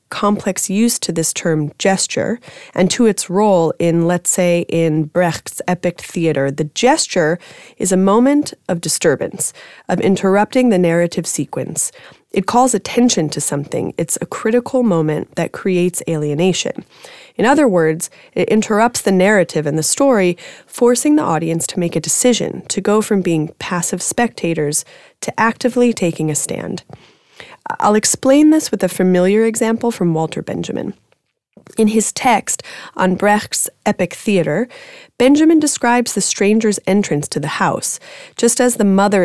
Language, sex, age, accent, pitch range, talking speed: Hebrew, female, 30-49, American, 170-230 Hz, 150 wpm